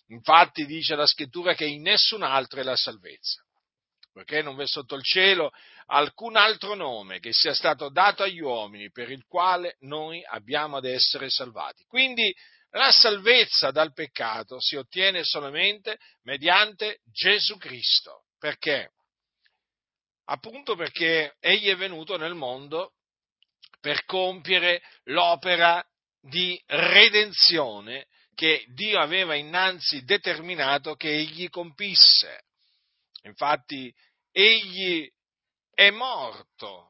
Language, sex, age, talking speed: Italian, male, 50-69, 115 wpm